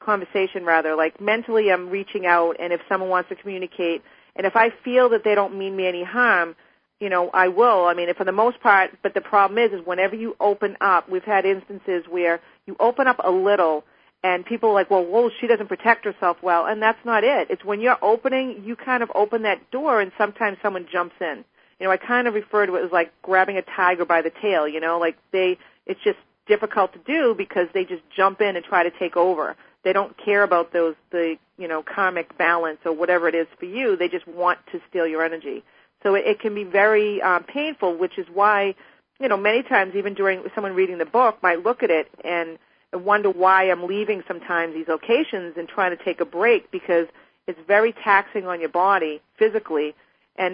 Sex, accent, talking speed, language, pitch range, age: female, American, 220 wpm, English, 175-210 Hz, 40-59